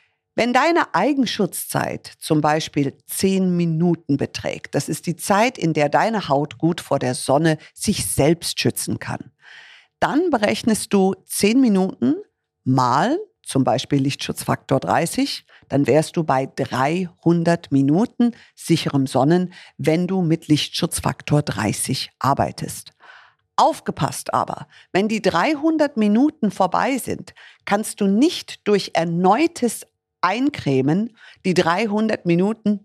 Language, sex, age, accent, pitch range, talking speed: German, female, 50-69, German, 150-205 Hz, 120 wpm